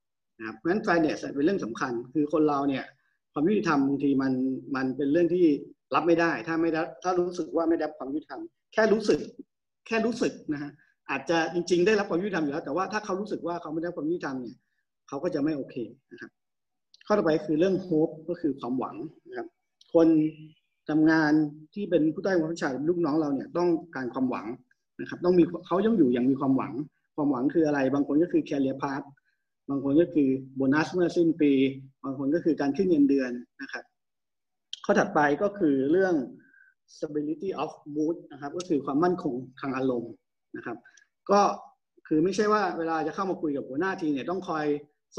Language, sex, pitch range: Thai, male, 145-190 Hz